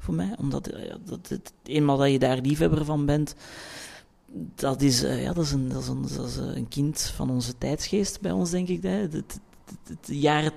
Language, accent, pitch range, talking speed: Dutch, Belgian, 135-160 Hz, 165 wpm